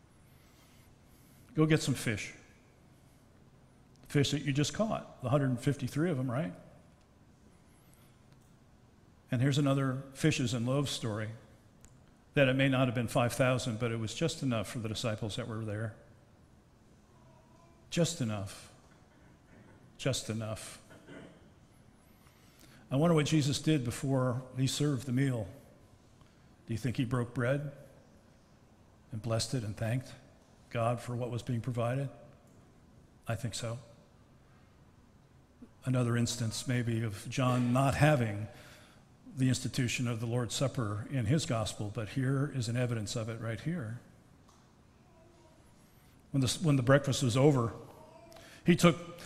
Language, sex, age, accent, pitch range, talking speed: English, male, 50-69, American, 120-145 Hz, 130 wpm